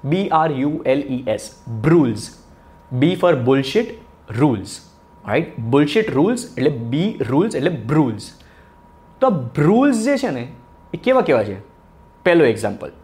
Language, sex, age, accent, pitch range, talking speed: Gujarati, male, 20-39, native, 110-175 Hz, 135 wpm